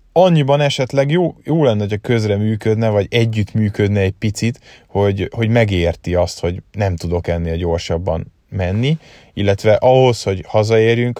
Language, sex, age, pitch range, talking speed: Hungarian, male, 30-49, 95-115 Hz, 145 wpm